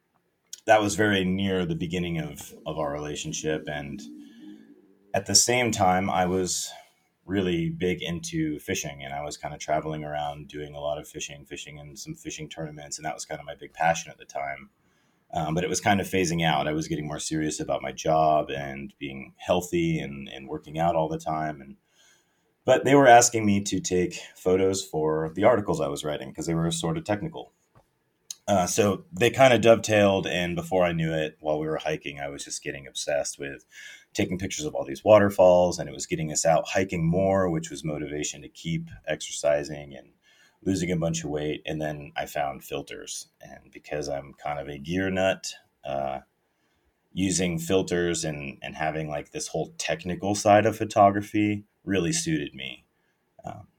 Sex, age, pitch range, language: male, 30-49, 75-95 Hz, English